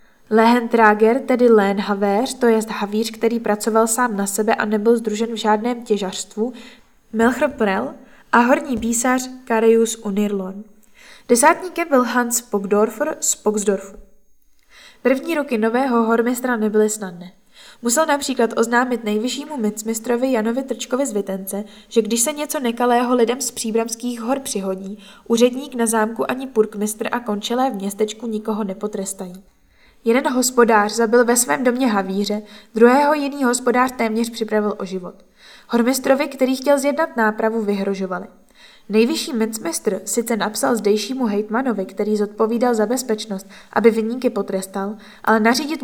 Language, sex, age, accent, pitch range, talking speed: Czech, female, 10-29, native, 210-245 Hz, 135 wpm